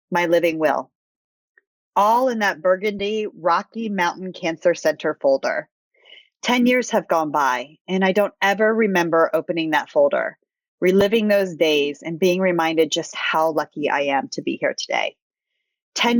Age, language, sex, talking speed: 30-49, English, female, 150 wpm